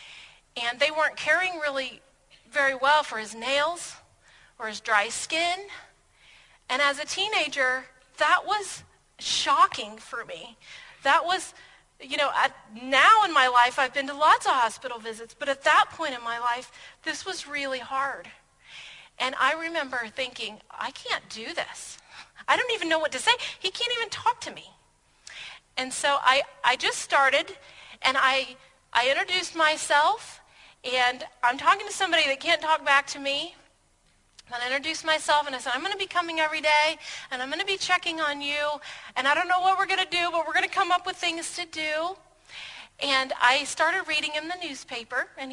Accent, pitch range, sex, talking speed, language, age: American, 255-340 Hz, female, 185 wpm, English, 40-59